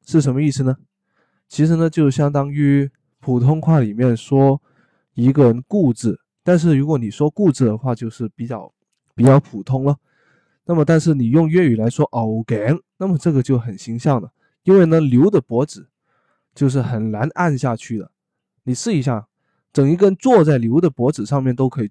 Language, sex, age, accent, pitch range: Chinese, male, 20-39, native, 120-155 Hz